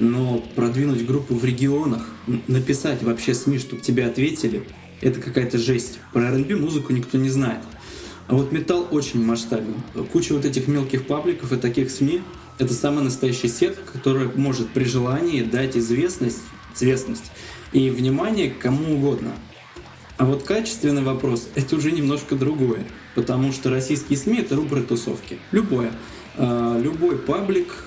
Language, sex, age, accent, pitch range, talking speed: Russian, male, 20-39, native, 120-145 Hz, 150 wpm